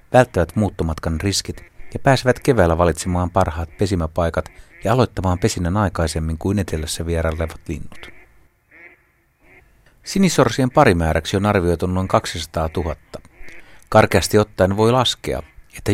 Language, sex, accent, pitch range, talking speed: Finnish, male, native, 80-105 Hz, 110 wpm